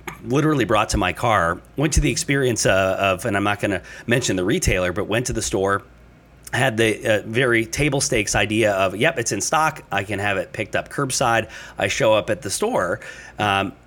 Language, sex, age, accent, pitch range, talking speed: English, male, 30-49, American, 100-135 Hz, 210 wpm